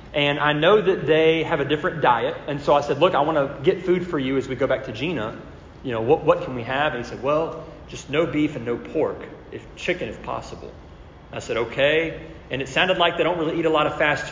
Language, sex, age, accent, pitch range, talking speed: English, male, 30-49, American, 135-160 Hz, 265 wpm